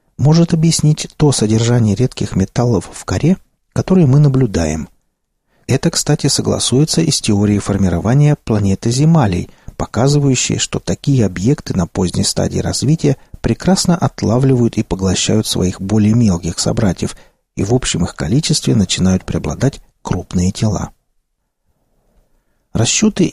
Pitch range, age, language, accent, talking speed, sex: 95-140 Hz, 40-59, Russian, native, 120 wpm, male